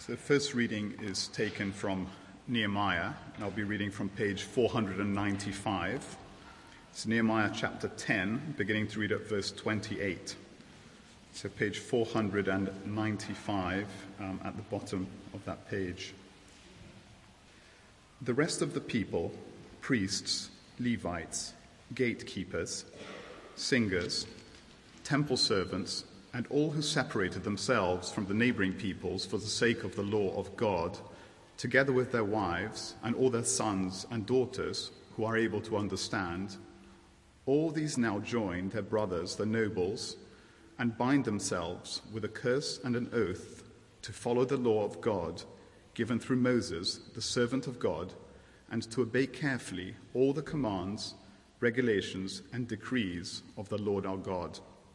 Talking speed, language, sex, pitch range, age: 135 wpm, English, male, 95-120 Hz, 40-59